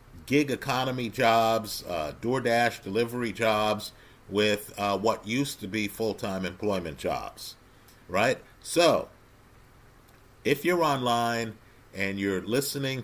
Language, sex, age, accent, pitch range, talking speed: English, male, 50-69, American, 100-130 Hz, 110 wpm